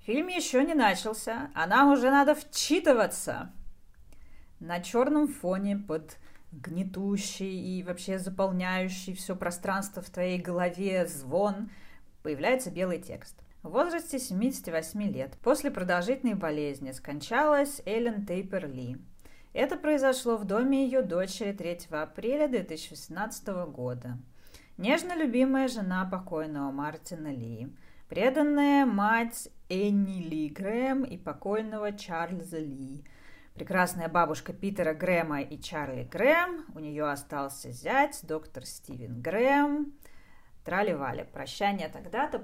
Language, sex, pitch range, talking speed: Russian, female, 160-250 Hz, 110 wpm